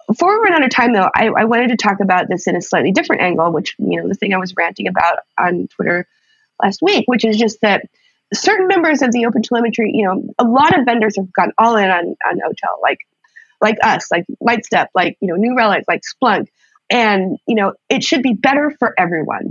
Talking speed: 235 wpm